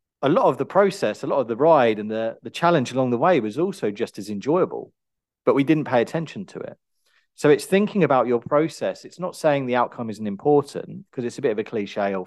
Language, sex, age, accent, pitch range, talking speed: English, male, 40-59, British, 105-145 Hz, 245 wpm